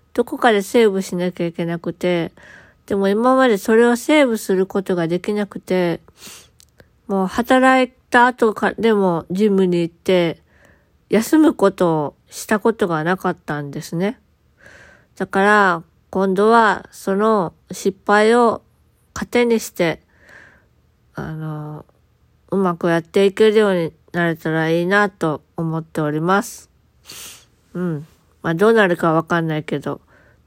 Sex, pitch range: female, 165-215 Hz